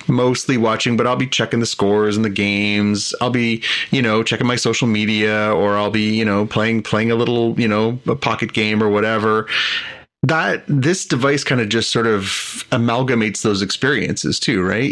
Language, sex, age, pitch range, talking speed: English, male, 30-49, 110-130 Hz, 195 wpm